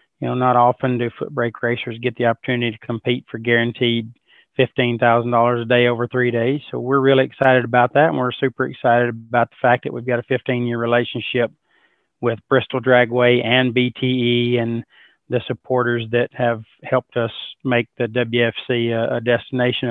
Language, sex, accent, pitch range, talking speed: English, male, American, 120-130 Hz, 175 wpm